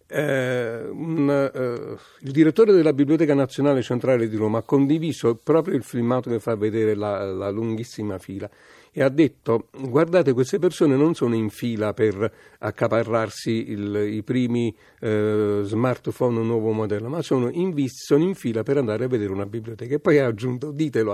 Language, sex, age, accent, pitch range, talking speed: Italian, male, 50-69, native, 115-145 Hz, 155 wpm